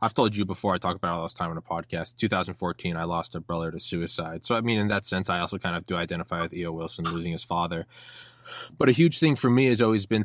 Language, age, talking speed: English, 20-39, 275 wpm